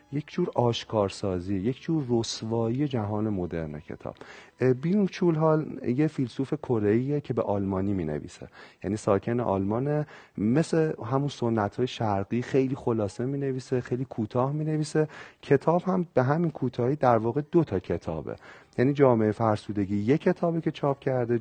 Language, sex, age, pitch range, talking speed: Persian, male, 40-59, 105-140 Hz, 150 wpm